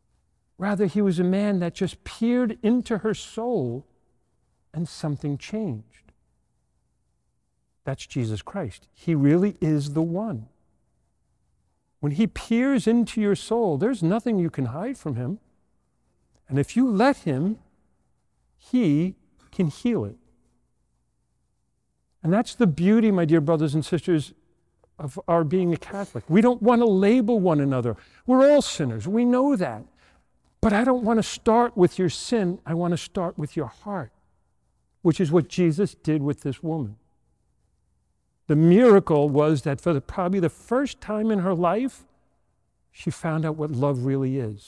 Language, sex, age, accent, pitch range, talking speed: English, male, 50-69, American, 130-205 Hz, 155 wpm